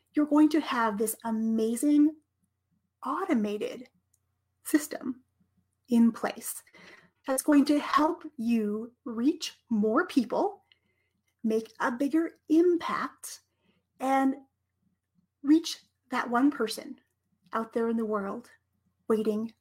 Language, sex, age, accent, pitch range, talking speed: English, female, 30-49, American, 225-285 Hz, 100 wpm